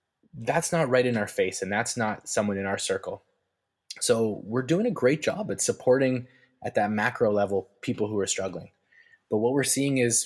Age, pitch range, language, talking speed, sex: 20-39, 105-125 Hz, English, 200 wpm, male